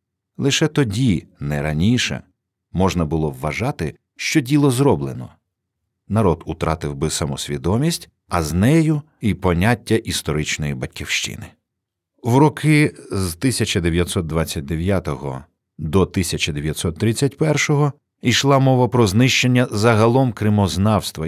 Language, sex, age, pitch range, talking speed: Ukrainian, male, 50-69, 85-120 Hz, 95 wpm